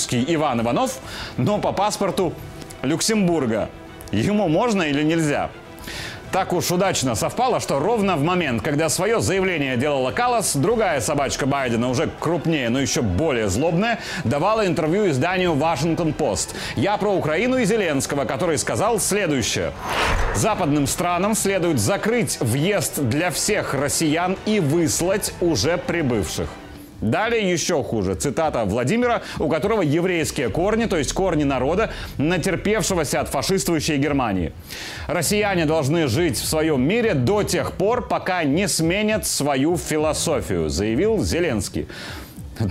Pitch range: 145-190 Hz